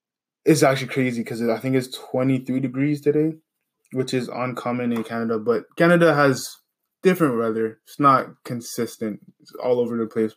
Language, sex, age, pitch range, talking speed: English, male, 20-39, 120-140 Hz, 160 wpm